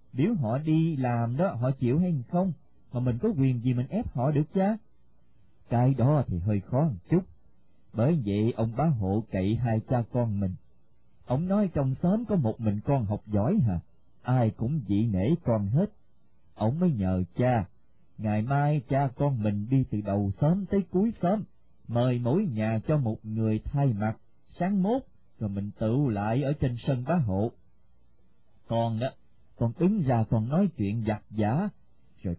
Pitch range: 105-155 Hz